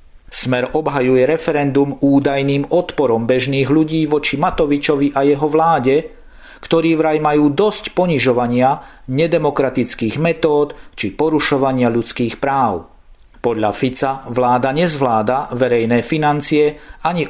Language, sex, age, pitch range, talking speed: Slovak, male, 50-69, 130-155 Hz, 105 wpm